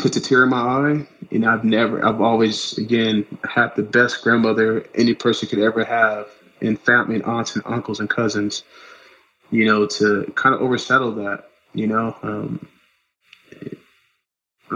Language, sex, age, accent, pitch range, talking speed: English, male, 20-39, American, 105-115 Hz, 165 wpm